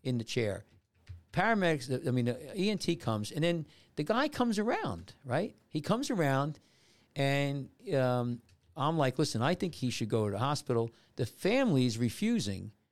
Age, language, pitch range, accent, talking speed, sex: 50-69, English, 110-155 Hz, American, 165 wpm, male